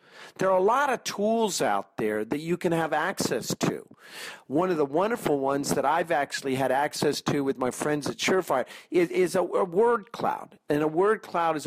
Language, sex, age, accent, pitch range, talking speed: English, male, 50-69, American, 135-175 Hz, 210 wpm